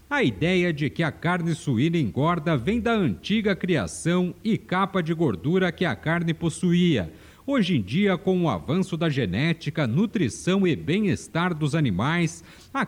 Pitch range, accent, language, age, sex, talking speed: 160-185 Hz, Brazilian, Portuguese, 50-69, male, 160 wpm